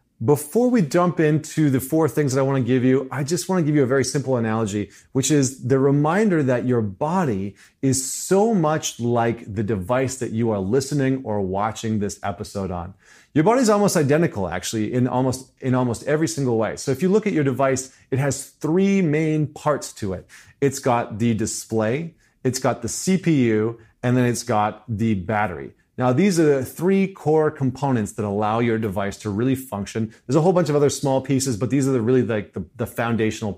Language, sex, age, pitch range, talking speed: English, male, 30-49, 110-145 Hz, 210 wpm